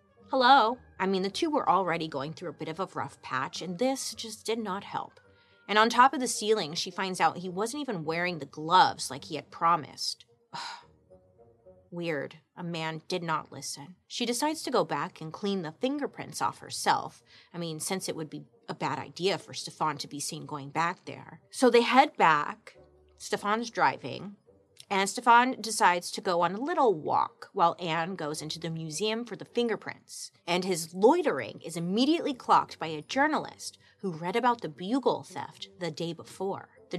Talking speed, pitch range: 190 wpm, 155-215 Hz